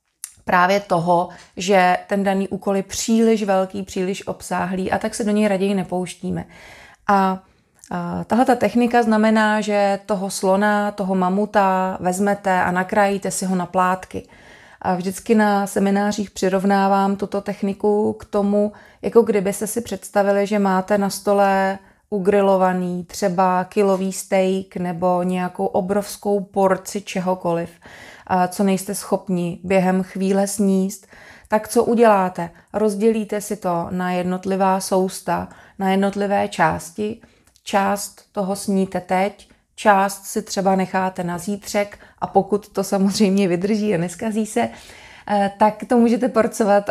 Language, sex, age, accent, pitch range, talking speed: Czech, female, 30-49, native, 185-205 Hz, 130 wpm